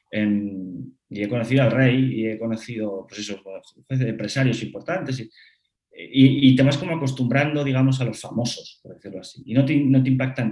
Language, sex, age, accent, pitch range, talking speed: Spanish, male, 30-49, Spanish, 110-130 Hz, 160 wpm